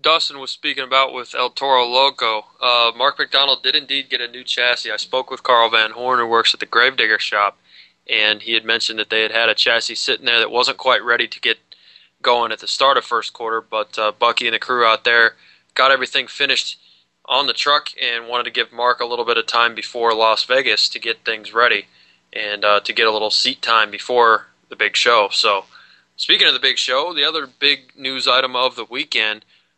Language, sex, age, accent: English, male, 20-39, American